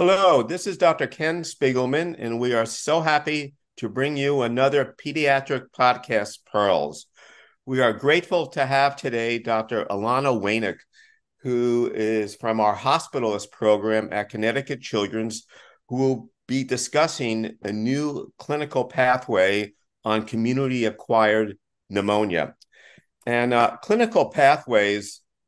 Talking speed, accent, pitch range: 120 wpm, American, 110-140 Hz